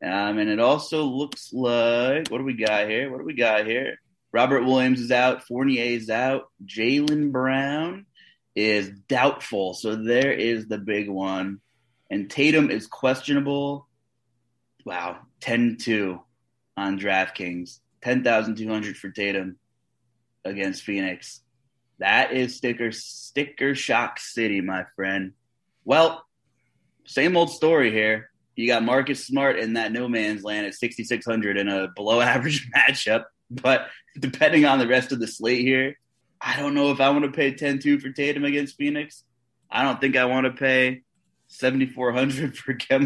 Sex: male